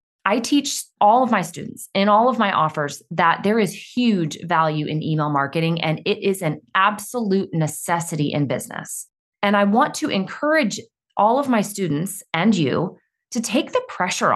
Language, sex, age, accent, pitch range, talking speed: English, female, 20-39, American, 160-220 Hz, 175 wpm